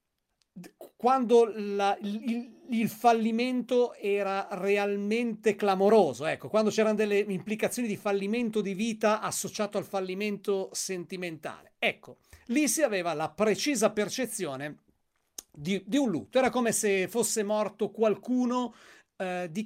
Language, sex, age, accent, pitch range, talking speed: Italian, male, 40-59, native, 195-235 Hz, 115 wpm